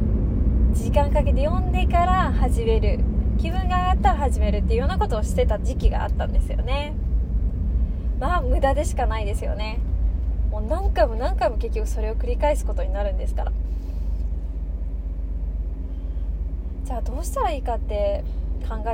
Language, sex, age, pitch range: Japanese, female, 20-39, 65-85 Hz